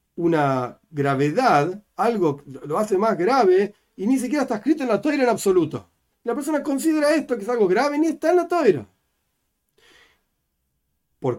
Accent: Argentinian